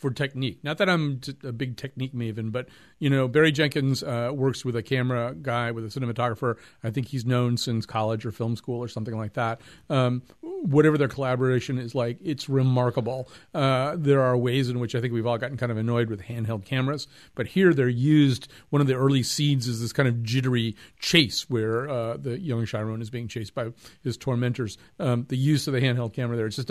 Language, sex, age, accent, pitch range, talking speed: English, male, 40-59, American, 115-135 Hz, 220 wpm